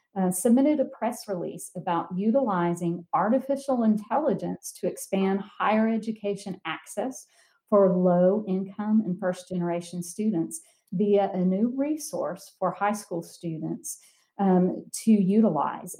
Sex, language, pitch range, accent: female, English, 180-225 Hz, American